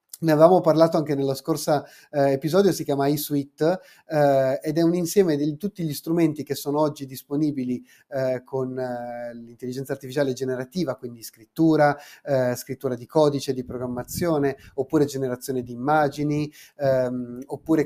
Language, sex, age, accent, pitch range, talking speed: Italian, male, 30-49, native, 130-155 Hz, 150 wpm